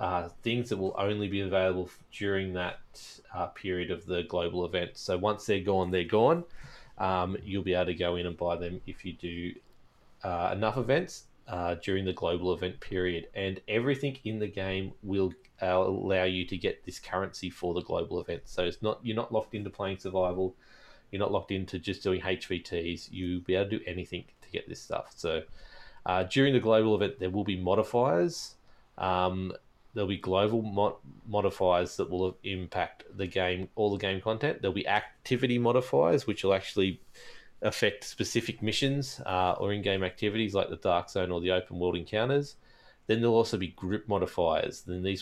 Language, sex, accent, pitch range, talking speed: English, male, Australian, 90-105 Hz, 185 wpm